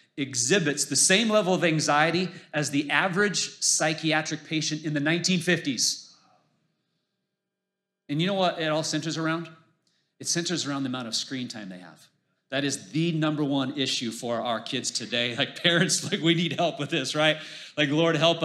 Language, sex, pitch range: English, male, 140-170 Hz